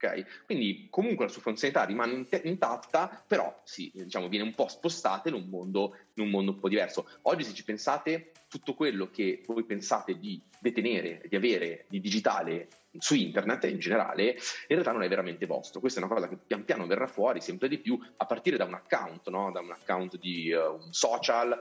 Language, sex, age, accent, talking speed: Italian, male, 30-49, native, 210 wpm